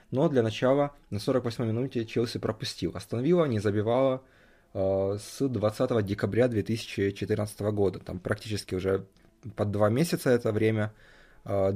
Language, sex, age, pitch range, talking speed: Russian, male, 20-39, 95-120 Hz, 135 wpm